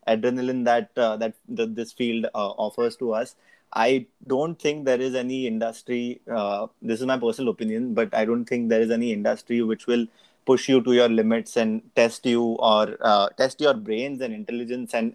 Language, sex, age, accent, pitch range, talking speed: English, male, 20-39, Indian, 110-130 Hz, 200 wpm